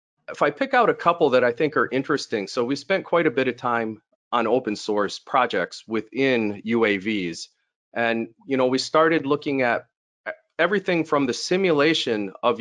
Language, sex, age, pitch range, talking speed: English, male, 40-59, 110-150 Hz, 165 wpm